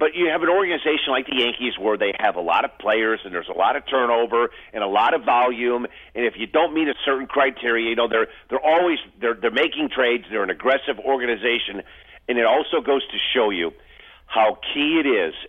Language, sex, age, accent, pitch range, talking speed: English, male, 50-69, American, 120-155 Hz, 225 wpm